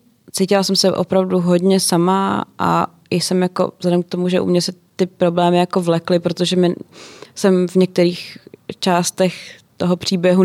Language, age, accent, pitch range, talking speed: Czech, 20-39, native, 165-185 Hz, 165 wpm